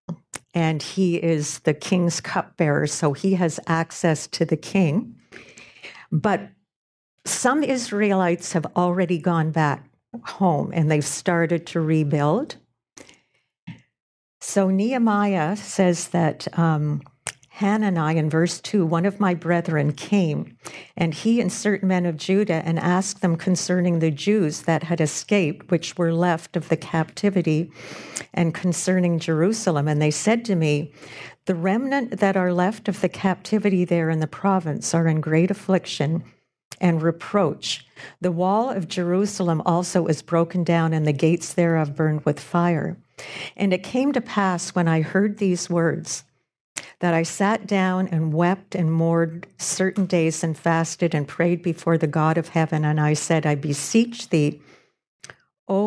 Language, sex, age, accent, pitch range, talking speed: English, female, 50-69, American, 160-185 Hz, 150 wpm